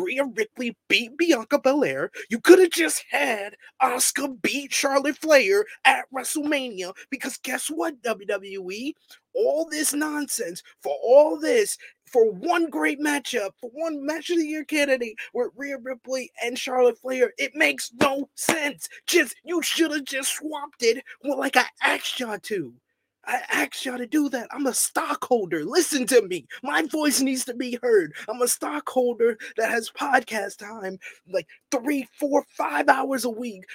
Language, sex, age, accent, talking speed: English, male, 20-39, American, 160 wpm